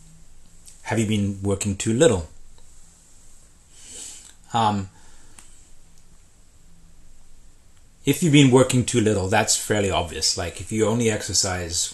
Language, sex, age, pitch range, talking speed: English, male, 30-49, 85-105 Hz, 105 wpm